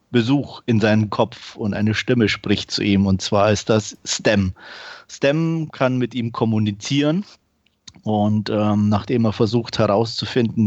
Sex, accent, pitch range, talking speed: male, German, 110-125 Hz, 145 wpm